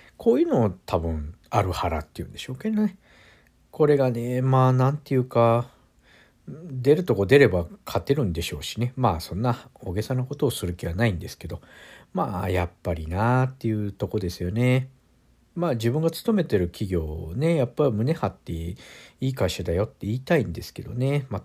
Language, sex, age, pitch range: Japanese, male, 50-69, 90-145 Hz